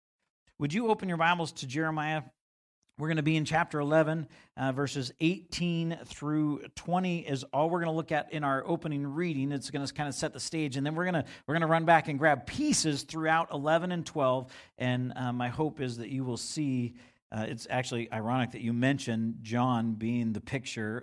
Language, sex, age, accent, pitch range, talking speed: English, male, 50-69, American, 115-155 Hz, 215 wpm